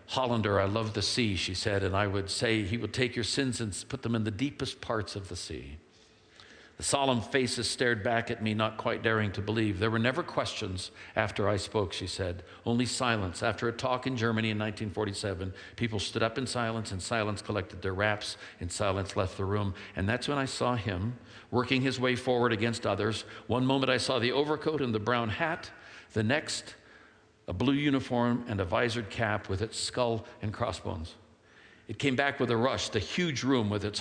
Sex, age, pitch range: male, 60-79, 100-125 Hz